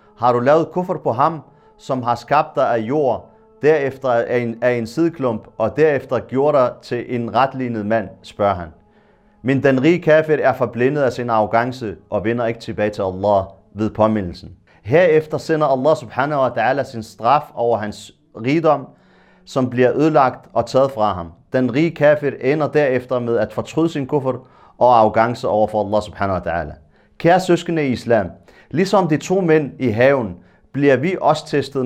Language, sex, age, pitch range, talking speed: Danish, male, 40-59, 115-155 Hz, 175 wpm